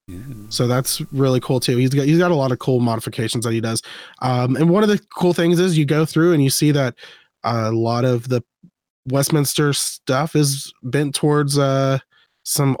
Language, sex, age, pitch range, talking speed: English, male, 20-39, 125-155 Hz, 200 wpm